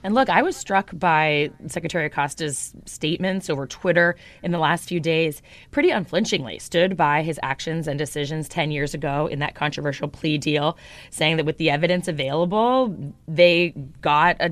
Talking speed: 170 wpm